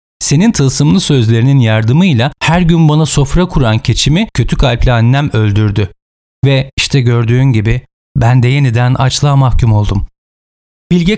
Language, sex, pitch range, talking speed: Turkish, male, 100-155 Hz, 135 wpm